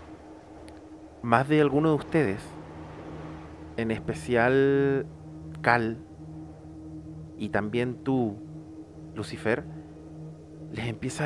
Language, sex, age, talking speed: Spanish, male, 30-49, 75 wpm